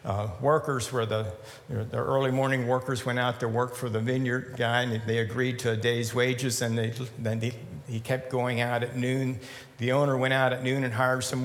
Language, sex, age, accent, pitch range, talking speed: English, male, 60-79, American, 120-140 Hz, 220 wpm